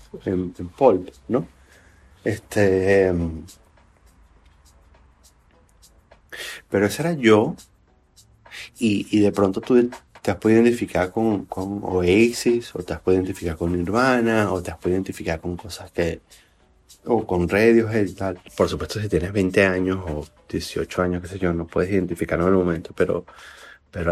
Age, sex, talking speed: 30-49, male, 155 wpm